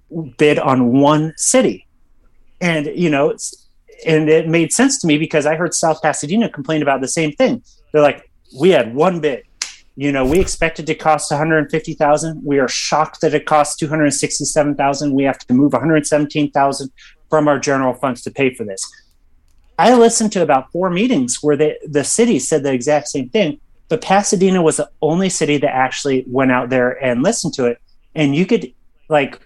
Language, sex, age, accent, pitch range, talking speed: English, male, 30-49, American, 135-165 Hz, 205 wpm